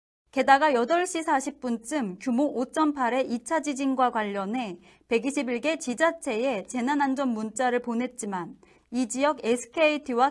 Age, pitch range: 30-49, 230-300 Hz